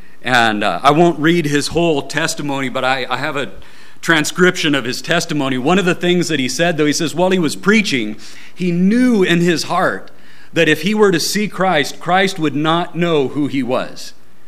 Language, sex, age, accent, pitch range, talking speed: English, male, 40-59, American, 115-155 Hz, 205 wpm